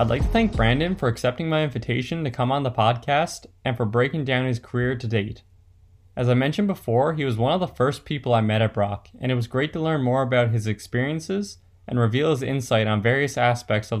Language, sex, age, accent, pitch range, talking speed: English, male, 20-39, American, 105-135 Hz, 235 wpm